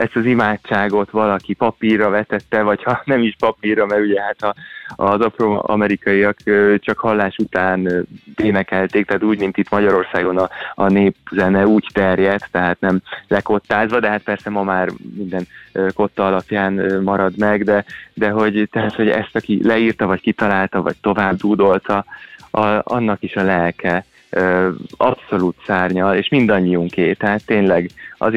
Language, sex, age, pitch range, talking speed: Hungarian, male, 20-39, 95-105 Hz, 140 wpm